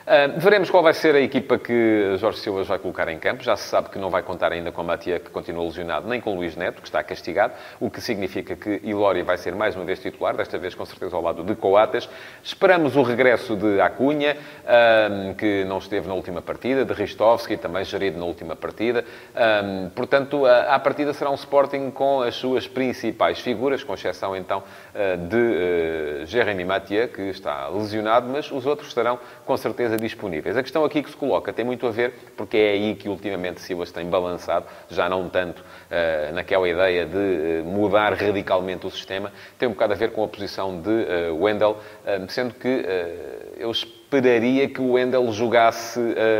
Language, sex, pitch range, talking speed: Portuguese, male, 95-125 Hz, 190 wpm